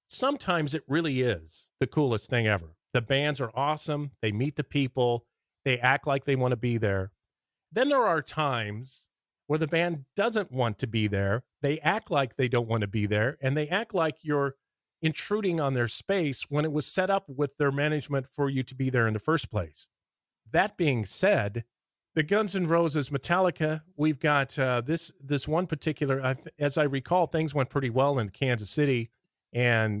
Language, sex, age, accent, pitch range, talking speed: English, male, 40-59, American, 115-155 Hz, 195 wpm